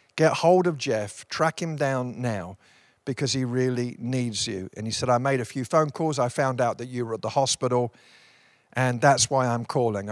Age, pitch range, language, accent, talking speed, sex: 50-69, 115-160 Hz, English, British, 215 wpm, male